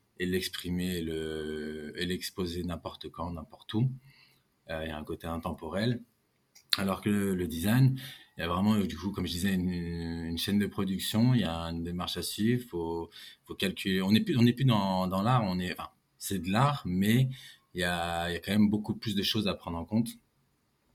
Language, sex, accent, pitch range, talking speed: French, male, French, 85-105 Hz, 220 wpm